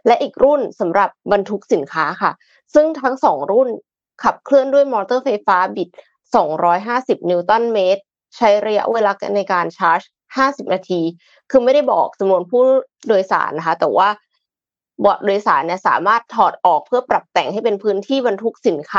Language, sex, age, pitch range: Thai, female, 20-39, 180-240 Hz